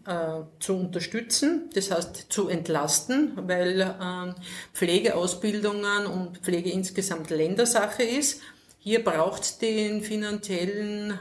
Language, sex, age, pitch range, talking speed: German, female, 50-69, 185-220 Hz, 90 wpm